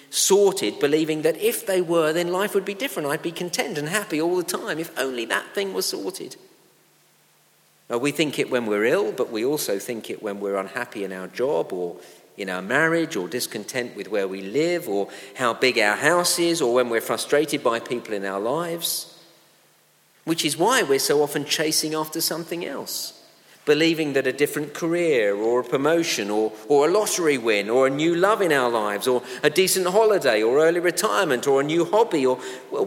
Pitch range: 130-175 Hz